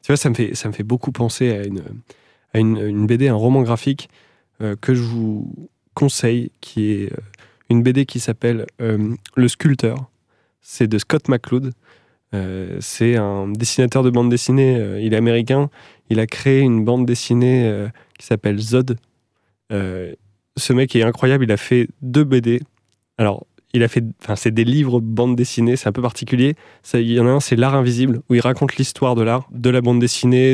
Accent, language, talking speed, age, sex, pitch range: French, French, 195 wpm, 20-39, male, 115-135 Hz